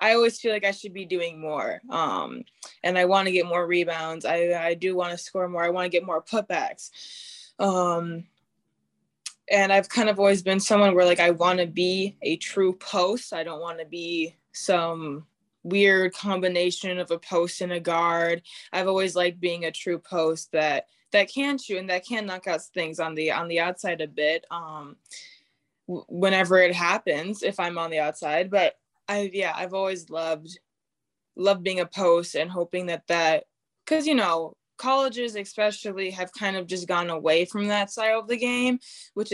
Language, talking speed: English, 190 wpm